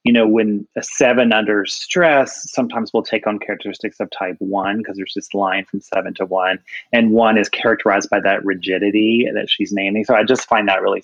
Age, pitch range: 30-49, 105-130 Hz